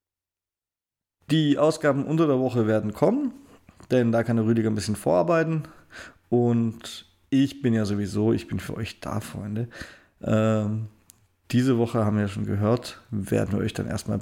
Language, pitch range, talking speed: German, 105-150 Hz, 160 wpm